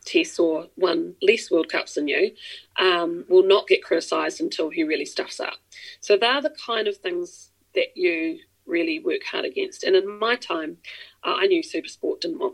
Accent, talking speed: Australian, 190 wpm